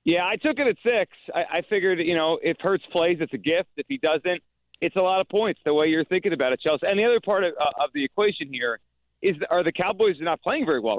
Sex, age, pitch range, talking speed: male, 40-59, 140-190 Hz, 275 wpm